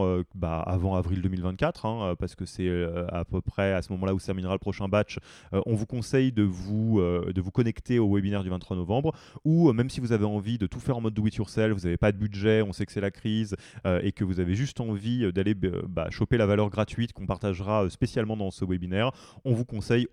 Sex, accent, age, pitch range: male, French, 20-39, 95-120 Hz